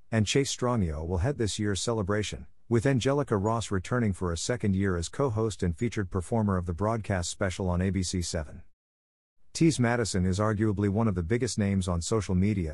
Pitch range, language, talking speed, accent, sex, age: 90-115 Hz, English, 185 wpm, American, male, 50-69